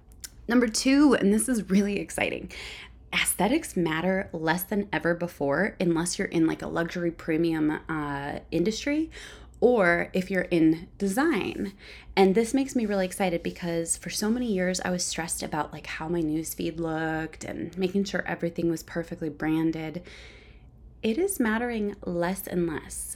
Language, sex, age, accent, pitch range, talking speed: English, female, 20-39, American, 165-205 Hz, 155 wpm